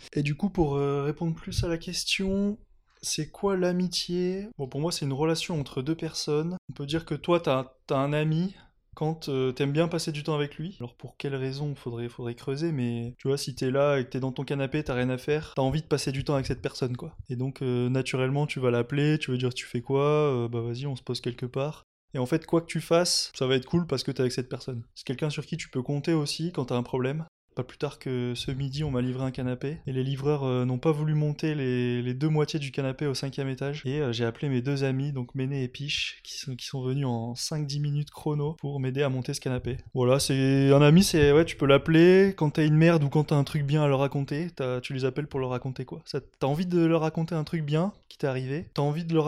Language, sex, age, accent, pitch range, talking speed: French, male, 20-39, French, 130-155 Hz, 270 wpm